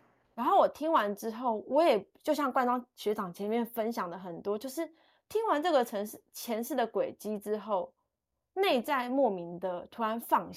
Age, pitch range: 20-39, 195-250 Hz